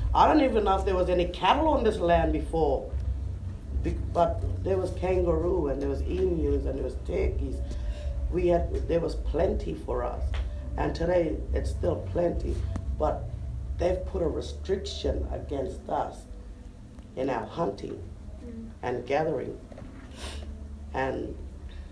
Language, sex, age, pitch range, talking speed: English, female, 60-79, 70-95 Hz, 135 wpm